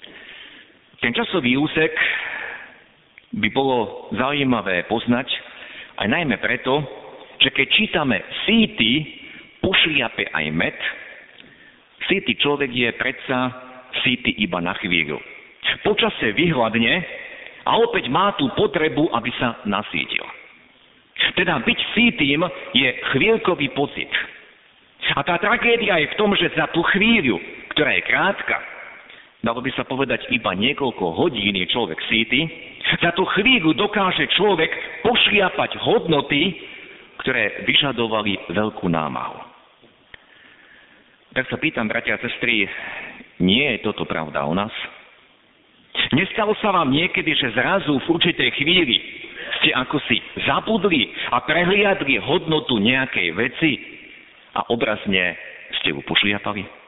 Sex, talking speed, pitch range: male, 115 wpm, 115-180 Hz